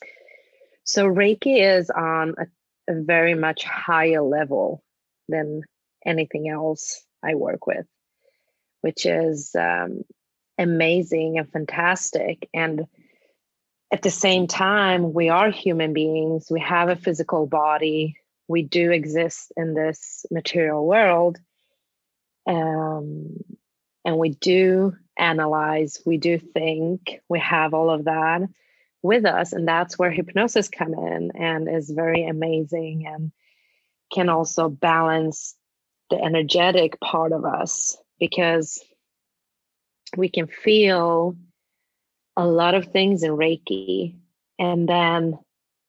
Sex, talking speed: female, 115 wpm